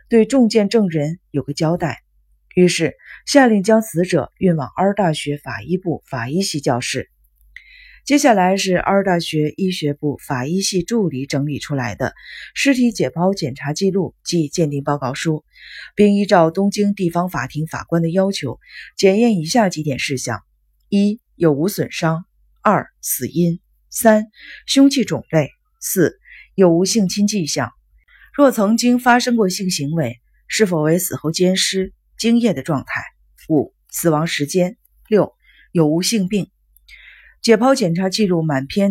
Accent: native